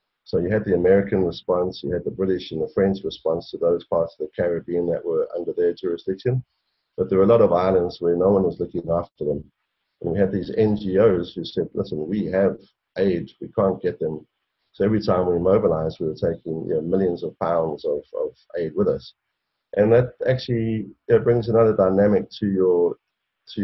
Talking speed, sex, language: 210 wpm, male, English